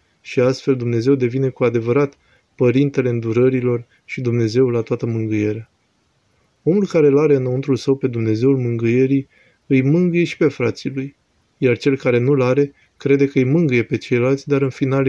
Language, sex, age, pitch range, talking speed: Romanian, male, 20-39, 115-140 Hz, 165 wpm